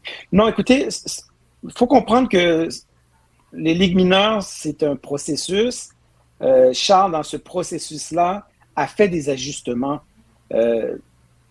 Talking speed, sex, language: 115 wpm, male, French